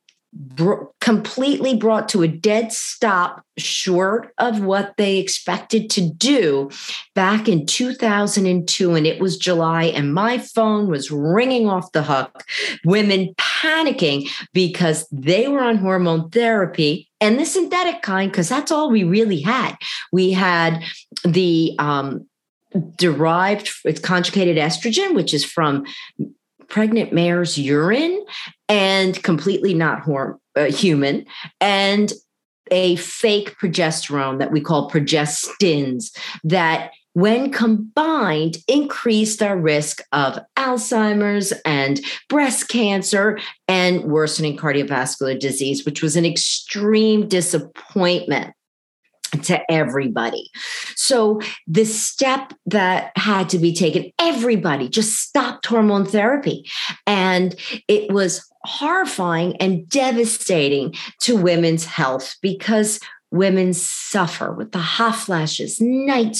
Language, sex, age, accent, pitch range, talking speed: English, female, 40-59, American, 165-225 Hz, 115 wpm